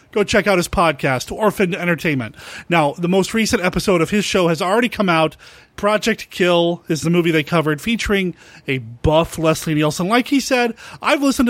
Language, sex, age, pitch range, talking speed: English, male, 30-49, 170-220 Hz, 190 wpm